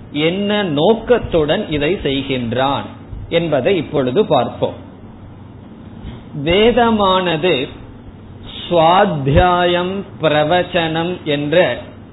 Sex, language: male, Tamil